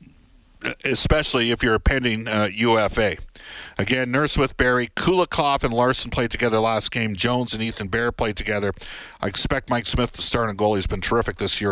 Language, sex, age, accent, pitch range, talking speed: English, male, 50-69, American, 95-120 Hz, 190 wpm